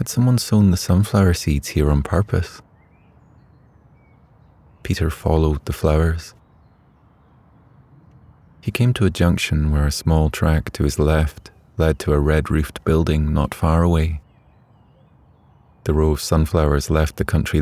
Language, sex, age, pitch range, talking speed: English, male, 30-49, 75-90 Hz, 135 wpm